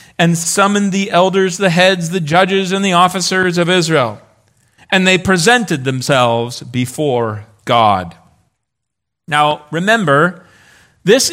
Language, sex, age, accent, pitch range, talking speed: English, male, 40-59, American, 135-205 Hz, 115 wpm